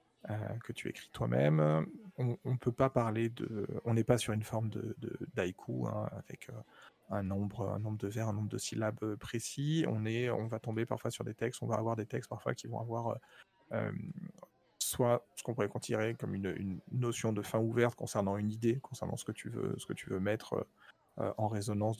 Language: French